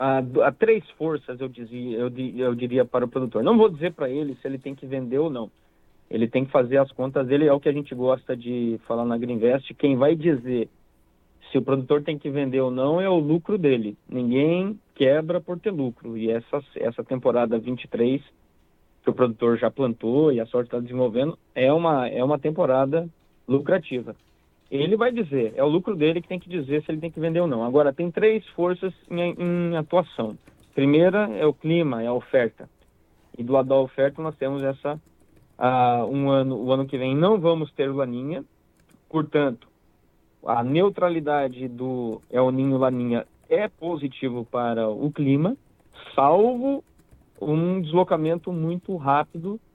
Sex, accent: male, Brazilian